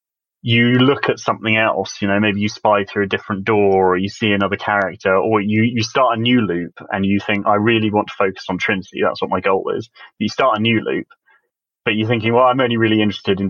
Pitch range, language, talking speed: 100-120 Hz, English, 250 wpm